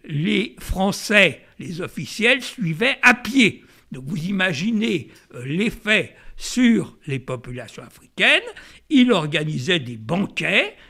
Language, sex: French, male